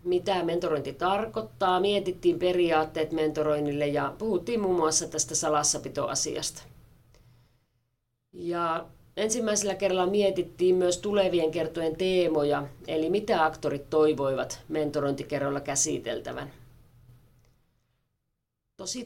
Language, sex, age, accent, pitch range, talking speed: Finnish, female, 40-59, native, 140-175 Hz, 90 wpm